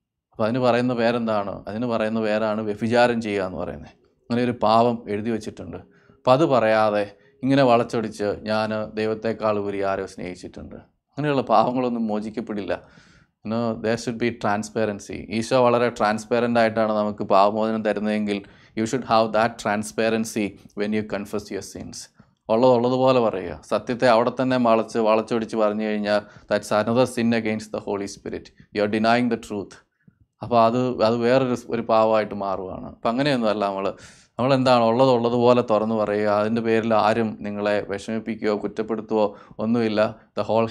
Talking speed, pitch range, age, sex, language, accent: 70 wpm, 105-120 Hz, 20-39, male, English, Indian